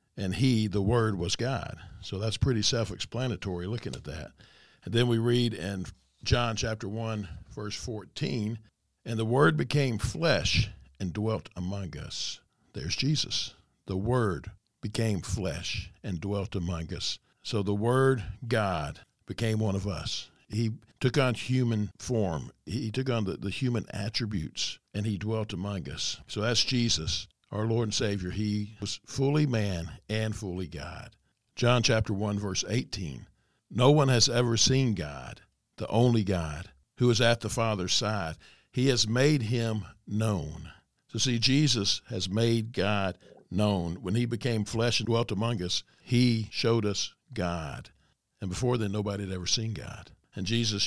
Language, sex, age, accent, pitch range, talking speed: English, male, 60-79, American, 95-120 Hz, 160 wpm